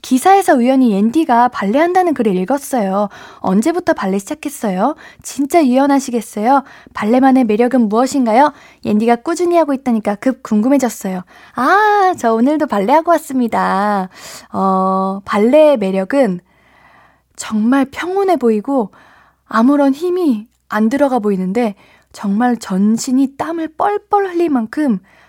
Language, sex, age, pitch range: Korean, female, 20-39, 215-290 Hz